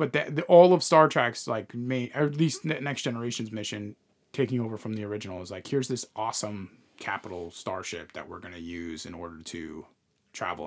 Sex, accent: male, American